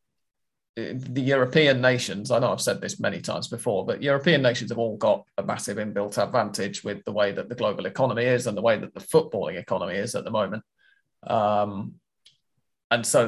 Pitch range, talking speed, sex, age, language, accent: 120-155 Hz, 195 wpm, male, 20-39, English, British